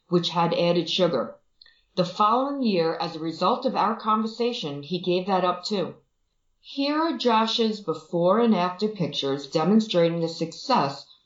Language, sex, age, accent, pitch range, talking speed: English, female, 40-59, American, 180-250 Hz, 150 wpm